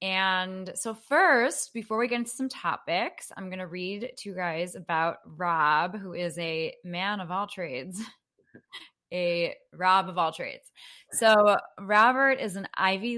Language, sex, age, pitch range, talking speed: English, female, 20-39, 170-225 Hz, 160 wpm